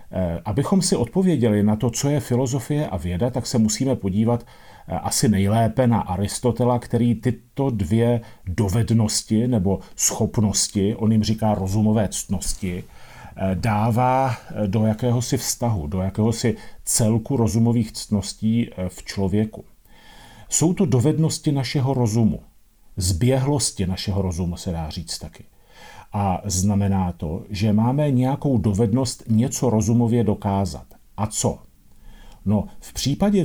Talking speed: 120 wpm